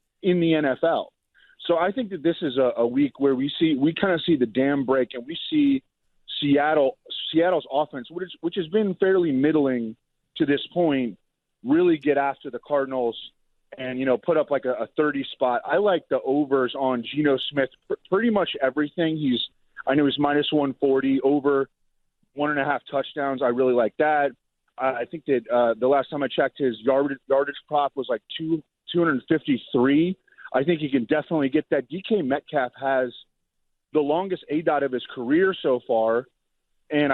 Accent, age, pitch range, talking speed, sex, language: American, 30-49, 130-165 Hz, 190 wpm, male, English